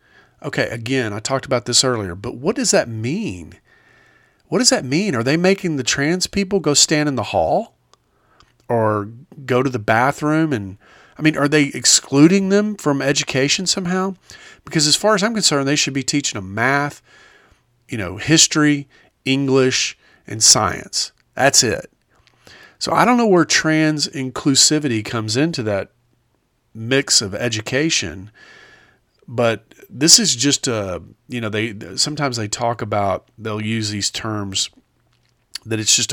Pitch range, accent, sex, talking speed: 110-145 Hz, American, male, 155 wpm